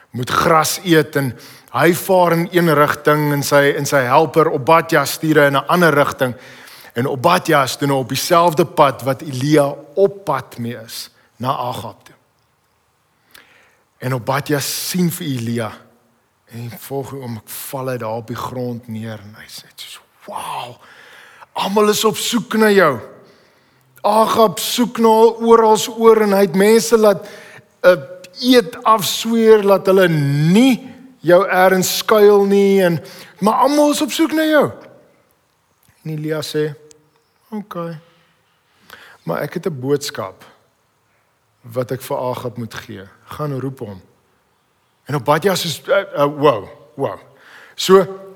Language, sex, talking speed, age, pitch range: English, male, 140 wpm, 50-69, 135-200 Hz